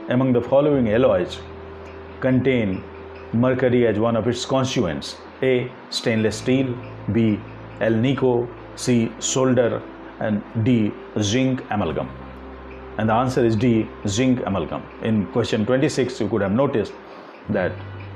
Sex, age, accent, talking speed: male, 50-69, native, 120 wpm